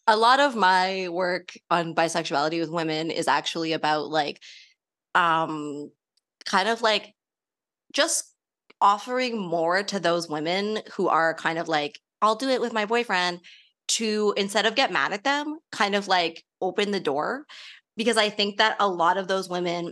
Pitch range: 180-240 Hz